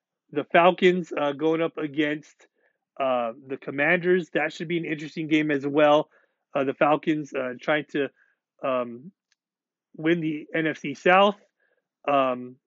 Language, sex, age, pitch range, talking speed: English, male, 30-49, 135-160 Hz, 135 wpm